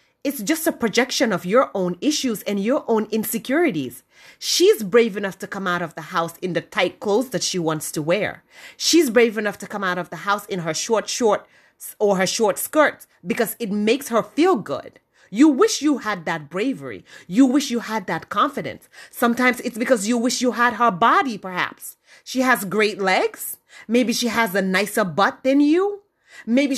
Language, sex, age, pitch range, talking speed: English, female, 30-49, 195-265 Hz, 195 wpm